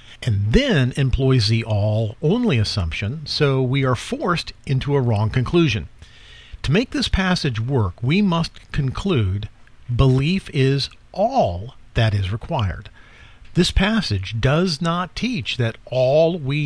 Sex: male